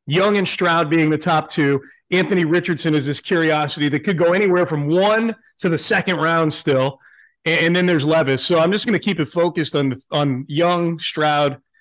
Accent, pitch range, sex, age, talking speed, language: American, 150-190 Hz, male, 40-59, 205 wpm, English